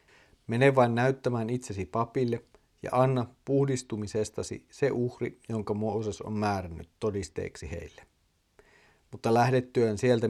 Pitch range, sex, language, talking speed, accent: 105-130 Hz, male, Finnish, 110 wpm, native